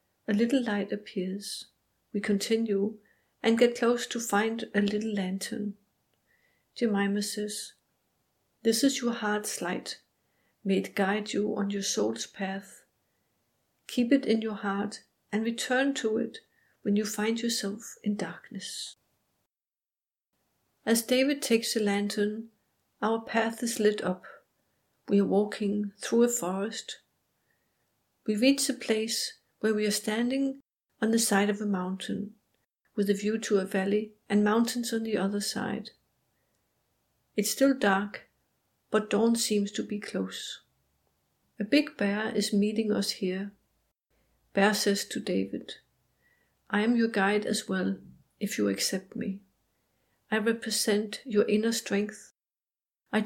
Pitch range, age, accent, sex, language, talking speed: 200-230 Hz, 60-79, Danish, female, English, 135 wpm